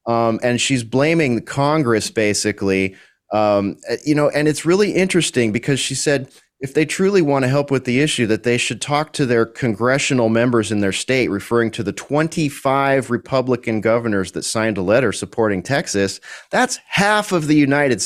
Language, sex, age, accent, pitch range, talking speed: English, male, 30-49, American, 105-140 Hz, 180 wpm